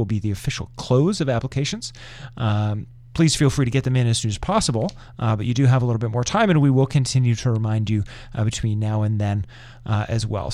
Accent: American